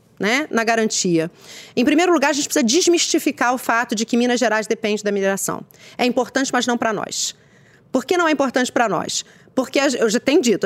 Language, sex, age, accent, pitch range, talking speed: English, female, 40-59, Brazilian, 235-340 Hz, 210 wpm